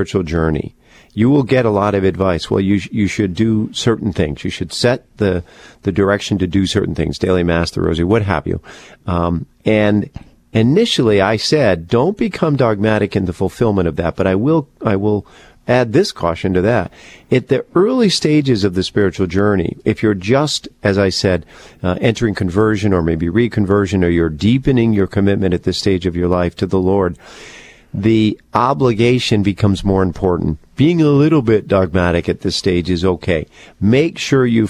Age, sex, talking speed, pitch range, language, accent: 50-69, male, 190 wpm, 90-115 Hz, English, American